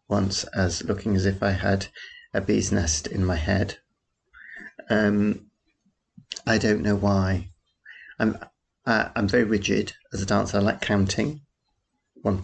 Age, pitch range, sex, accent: 30-49, 95-105 Hz, male, British